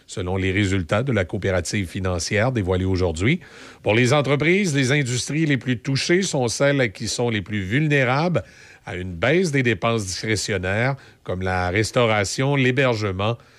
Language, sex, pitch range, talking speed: French, male, 100-135 Hz, 150 wpm